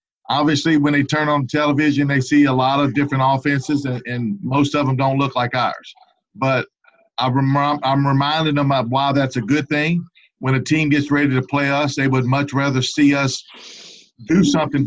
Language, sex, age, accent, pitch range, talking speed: English, male, 50-69, American, 130-150 Hz, 200 wpm